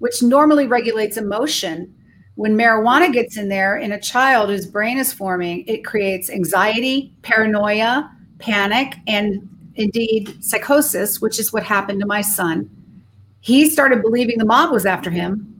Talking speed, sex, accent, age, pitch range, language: 150 wpm, female, American, 40-59, 190-230 Hz, English